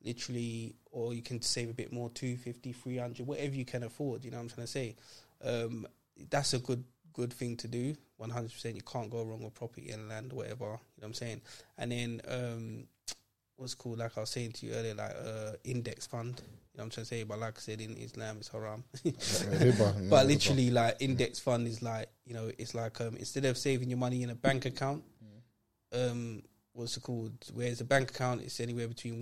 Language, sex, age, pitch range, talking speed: English, male, 20-39, 115-125 Hz, 230 wpm